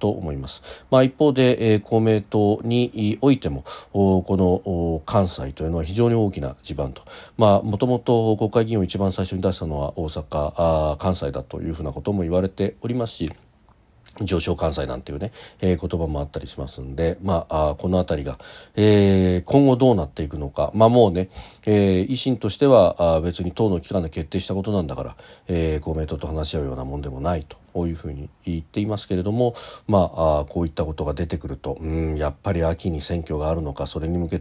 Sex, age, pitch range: male, 40-59, 80-105 Hz